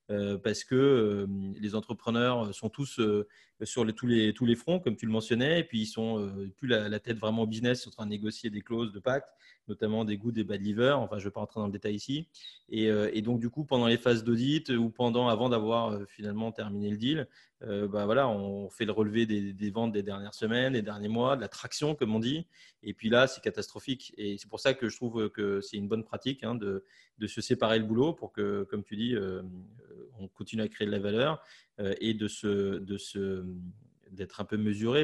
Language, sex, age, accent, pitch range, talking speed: French, male, 30-49, French, 105-130 Hz, 250 wpm